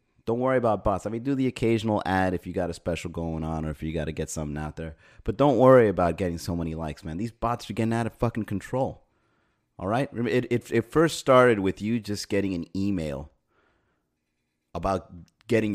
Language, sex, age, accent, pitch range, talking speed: English, male, 30-49, American, 85-115 Hz, 220 wpm